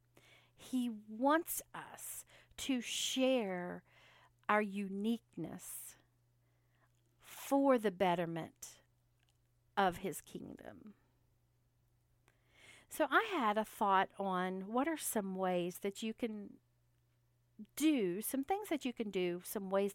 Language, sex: English, female